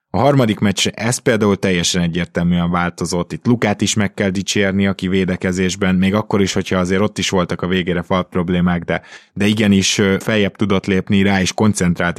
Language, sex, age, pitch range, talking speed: Hungarian, male, 20-39, 90-105 Hz, 180 wpm